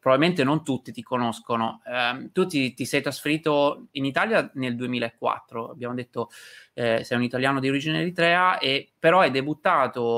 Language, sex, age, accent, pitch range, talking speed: Italian, male, 20-39, native, 120-150 Hz, 160 wpm